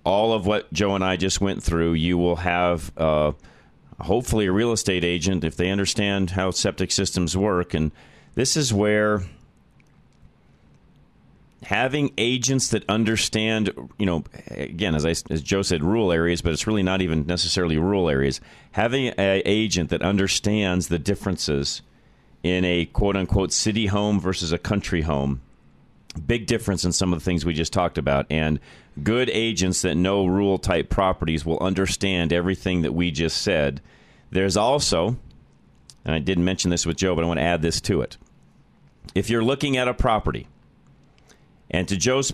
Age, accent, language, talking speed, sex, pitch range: 40-59, American, English, 165 wpm, male, 85-105 Hz